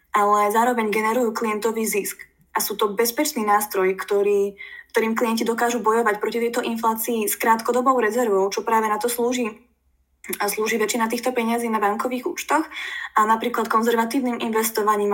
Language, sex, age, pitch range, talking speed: Slovak, female, 20-39, 210-245 Hz, 150 wpm